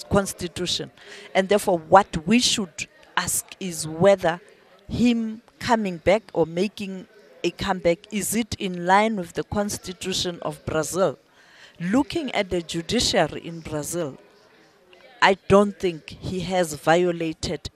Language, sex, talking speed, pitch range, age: English, female, 125 wpm, 180-230 Hz, 40-59